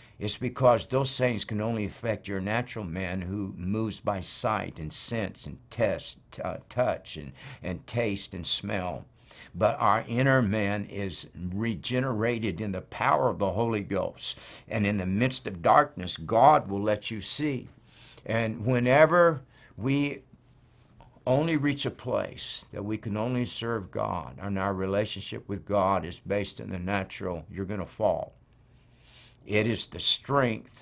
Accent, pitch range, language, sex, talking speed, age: American, 100-130 Hz, English, male, 155 wpm, 60-79